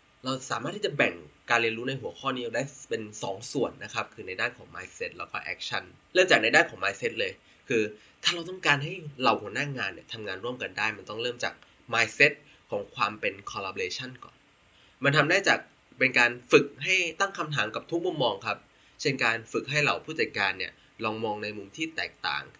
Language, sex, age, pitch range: Thai, male, 20-39, 120-170 Hz